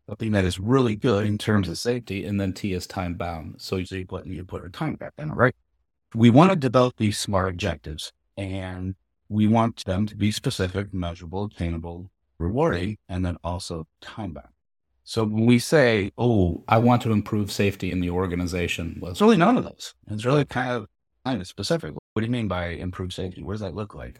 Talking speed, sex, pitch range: 210 wpm, male, 90-125 Hz